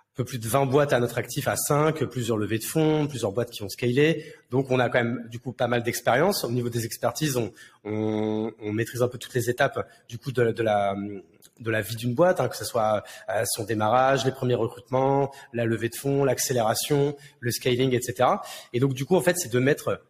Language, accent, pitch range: French, French, 110-140 Hz